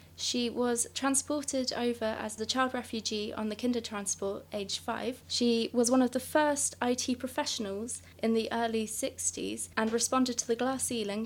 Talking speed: 170 wpm